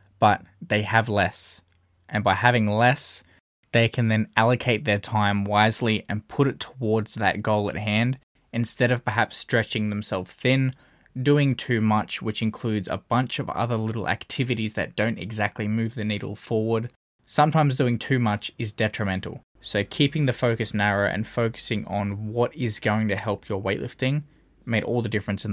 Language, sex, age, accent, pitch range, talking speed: English, male, 20-39, Australian, 105-120 Hz, 170 wpm